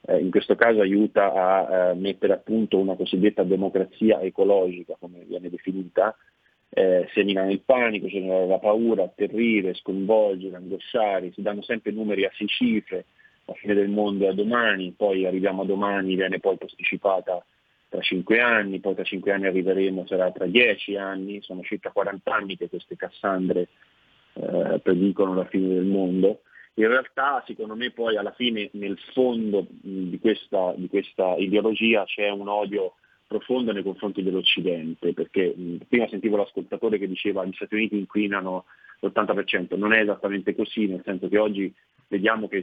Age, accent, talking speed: 30-49, native, 170 wpm